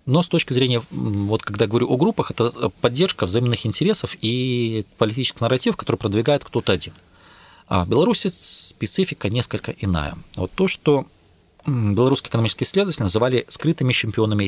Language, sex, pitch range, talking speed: Russian, male, 95-130 Hz, 140 wpm